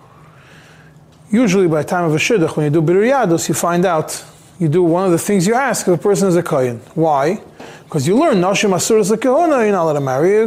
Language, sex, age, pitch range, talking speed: English, male, 20-39, 150-195 Hz, 240 wpm